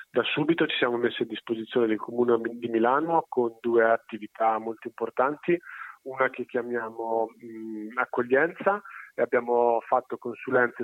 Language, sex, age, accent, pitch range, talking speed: Italian, male, 30-49, native, 110-125 Hz, 140 wpm